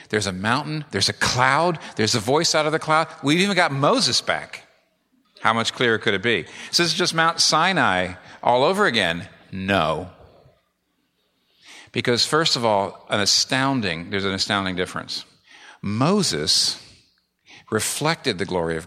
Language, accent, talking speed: English, American, 155 wpm